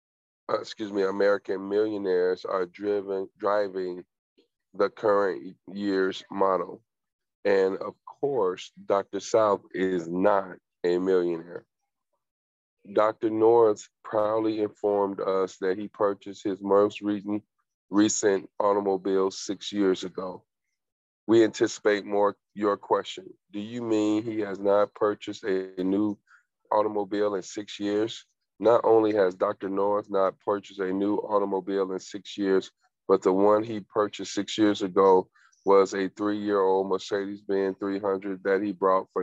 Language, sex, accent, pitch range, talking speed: English, male, American, 95-105 Hz, 130 wpm